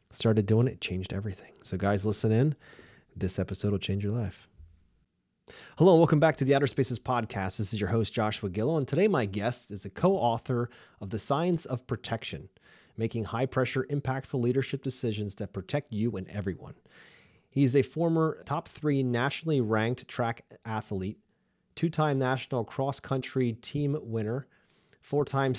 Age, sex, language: 30-49, male, English